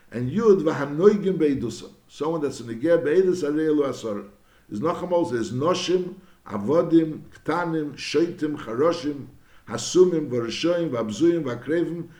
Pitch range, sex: 135-180 Hz, male